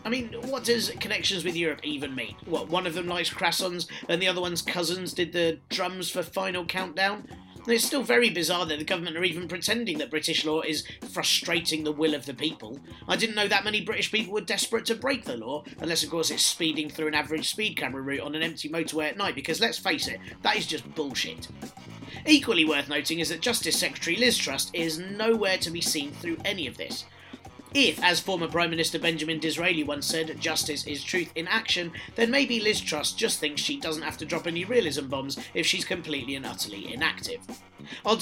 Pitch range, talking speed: 155-215 Hz, 215 wpm